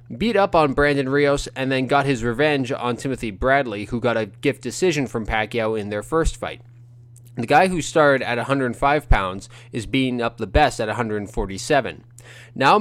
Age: 20-39